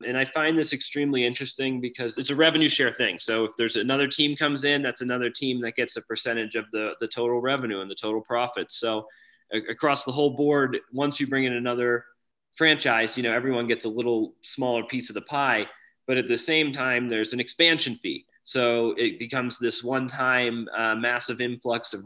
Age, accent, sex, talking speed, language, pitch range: 20-39, American, male, 205 wpm, English, 115-135 Hz